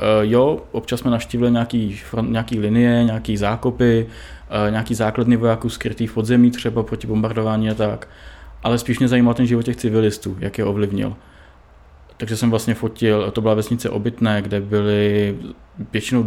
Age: 20-39